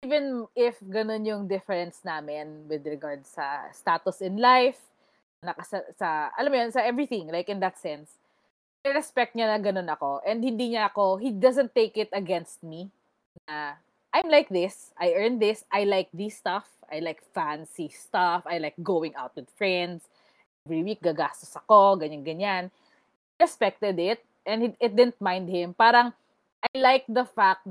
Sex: female